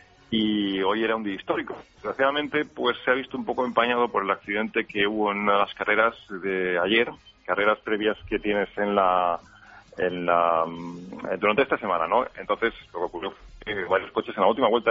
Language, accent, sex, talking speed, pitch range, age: Spanish, Spanish, male, 190 wpm, 90-110 Hz, 40-59